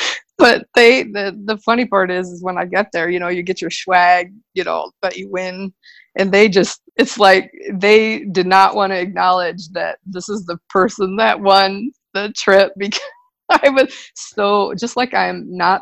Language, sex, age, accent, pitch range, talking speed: English, female, 20-39, American, 175-205 Hz, 195 wpm